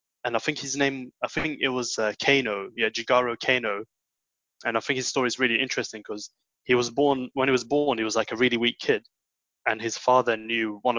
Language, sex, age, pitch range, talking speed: English, male, 20-39, 115-130 Hz, 230 wpm